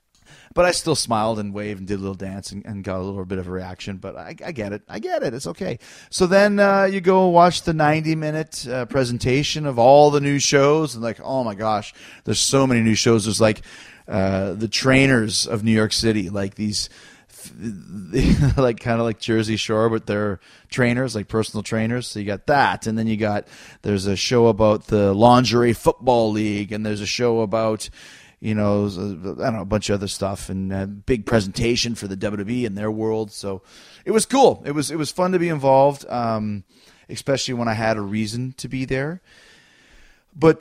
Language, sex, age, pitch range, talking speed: English, male, 30-49, 105-130 Hz, 210 wpm